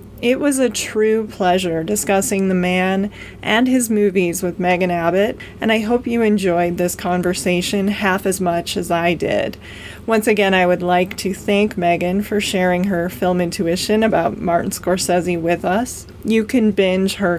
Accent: American